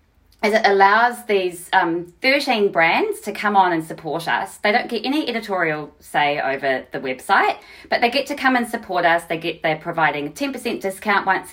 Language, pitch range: English, 145-205 Hz